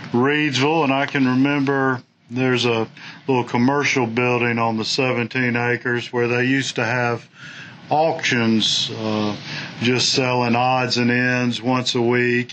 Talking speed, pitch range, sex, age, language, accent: 140 wpm, 120-140 Hz, male, 50-69, English, American